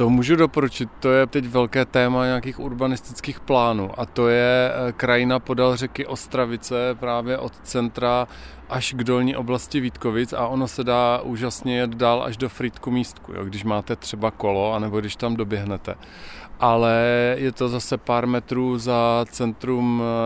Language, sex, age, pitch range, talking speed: Czech, male, 40-59, 115-125 Hz, 160 wpm